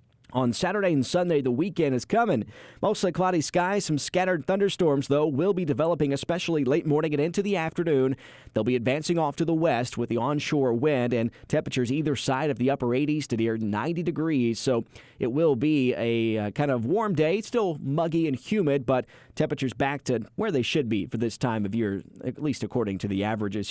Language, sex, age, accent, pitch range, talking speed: English, male, 30-49, American, 120-155 Hz, 205 wpm